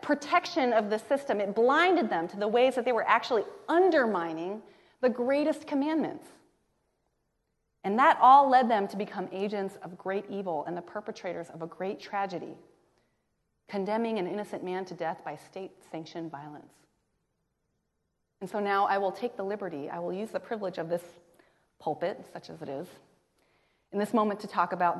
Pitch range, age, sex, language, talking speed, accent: 185-280 Hz, 30-49, female, English, 170 wpm, American